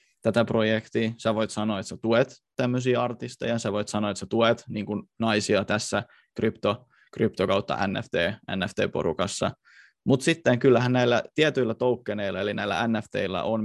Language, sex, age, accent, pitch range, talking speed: Finnish, male, 20-39, native, 105-125 Hz, 135 wpm